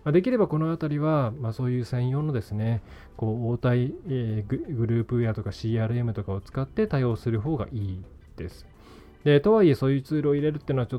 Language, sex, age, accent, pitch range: Japanese, male, 20-39, native, 105-155 Hz